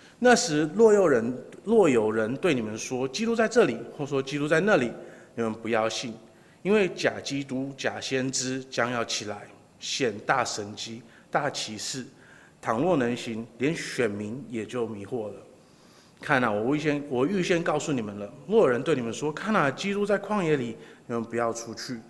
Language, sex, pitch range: Chinese, male, 115-165 Hz